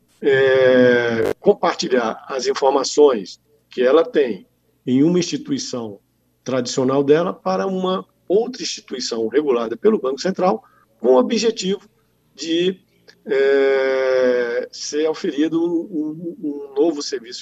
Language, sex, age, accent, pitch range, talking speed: Portuguese, male, 50-69, Brazilian, 130-195 Hz, 100 wpm